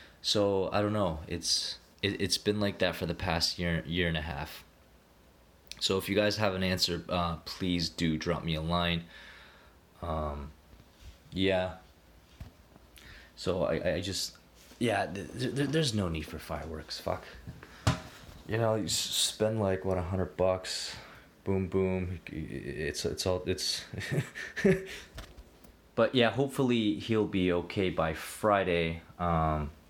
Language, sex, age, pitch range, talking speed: English, male, 20-39, 80-100 Hz, 135 wpm